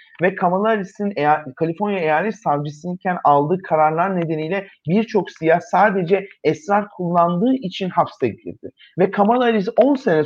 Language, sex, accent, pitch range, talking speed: Turkish, male, native, 165-210 Hz, 130 wpm